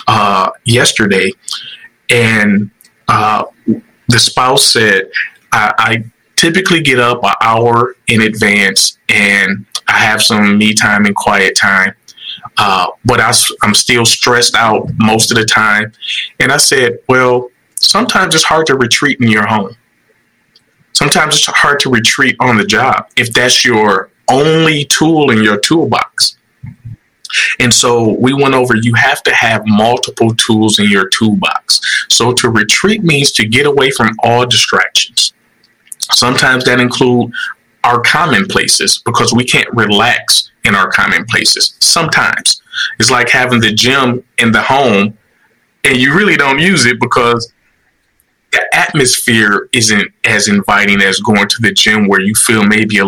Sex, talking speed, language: male, 150 wpm, English